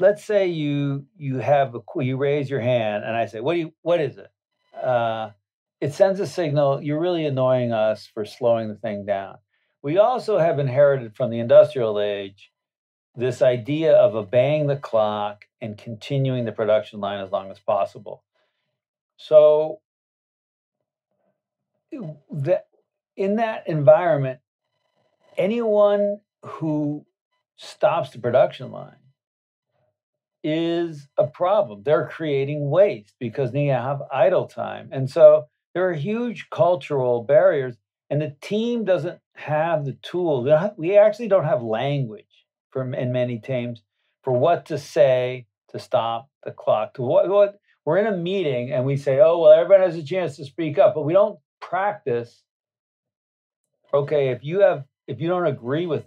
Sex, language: male, English